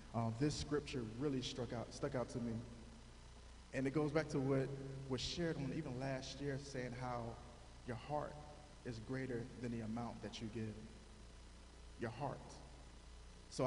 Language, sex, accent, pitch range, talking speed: English, male, American, 110-145 Hz, 160 wpm